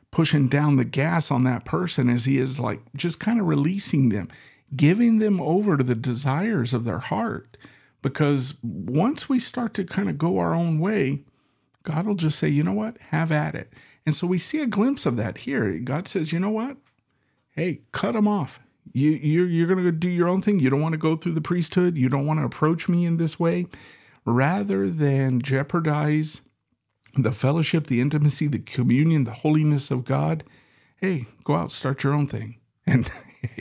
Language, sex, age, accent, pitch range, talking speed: English, male, 50-69, American, 125-160 Hz, 195 wpm